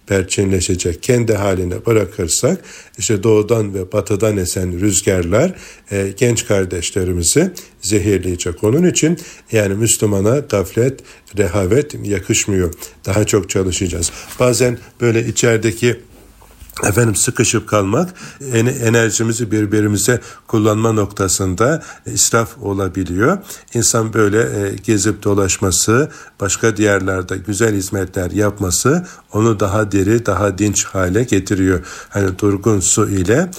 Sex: male